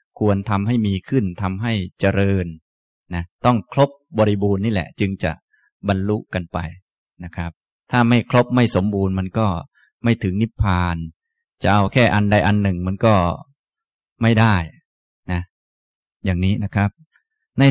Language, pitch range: Thai, 95-115 Hz